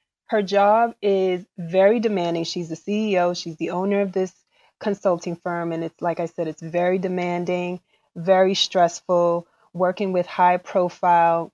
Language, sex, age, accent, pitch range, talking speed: English, female, 20-39, American, 180-220 Hz, 145 wpm